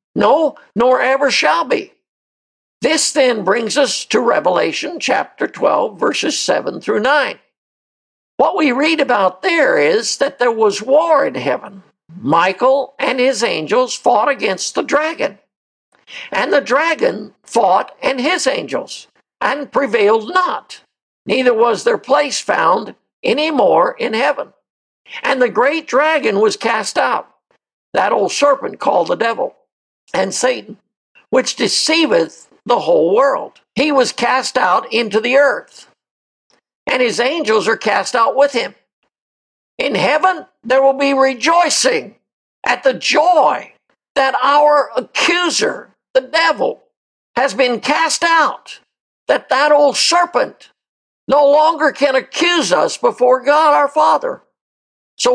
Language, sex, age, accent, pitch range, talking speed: English, male, 60-79, American, 255-325 Hz, 135 wpm